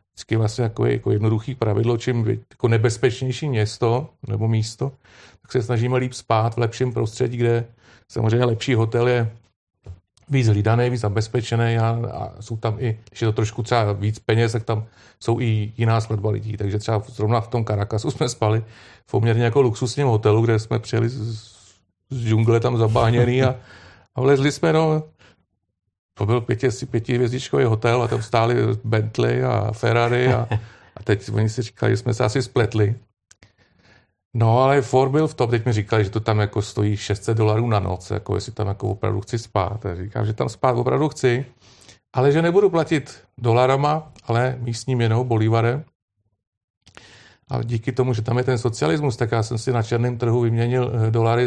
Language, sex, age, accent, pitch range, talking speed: Czech, male, 40-59, native, 110-125 Hz, 180 wpm